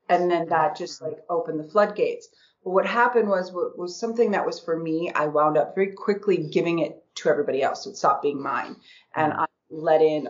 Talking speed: 210 wpm